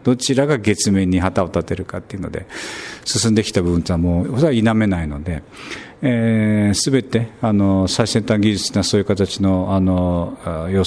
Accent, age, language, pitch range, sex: native, 50-69, Japanese, 95-130 Hz, male